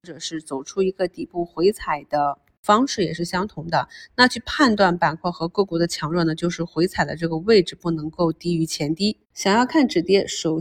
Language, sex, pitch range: Chinese, female, 170-205 Hz